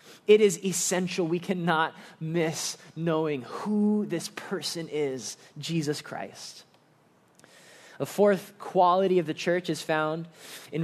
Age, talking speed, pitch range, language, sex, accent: 20-39, 120 wpm, 160-205 Hz, English, male, American